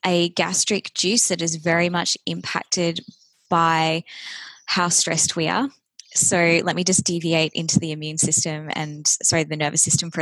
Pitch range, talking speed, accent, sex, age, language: 160-185 Hz, 165 wpm, Australian, female, 20-39, English